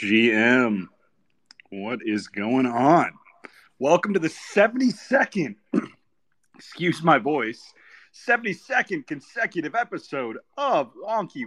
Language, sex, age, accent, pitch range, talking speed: English, male, 30-49, American, 120-200 Hz, 90 wpm